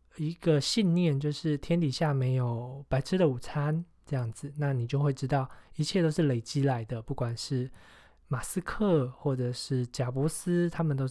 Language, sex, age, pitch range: Chinese, male, 20-39, 125-160 Hz